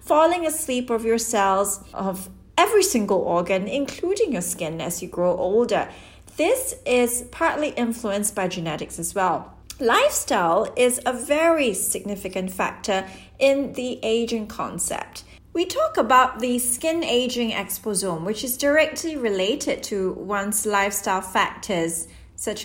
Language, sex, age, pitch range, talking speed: English, female, 30-49, 190-260 Hz, 130 wpm